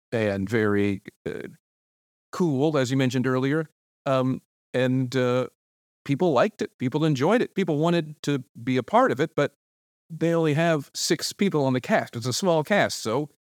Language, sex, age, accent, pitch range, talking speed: Swedish, male, 40-59, American, 115-155 Hz, 175 wpm